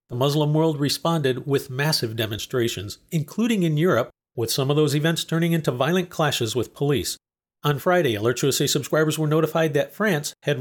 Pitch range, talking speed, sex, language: 130-165 Hz, 175 wpm, male, English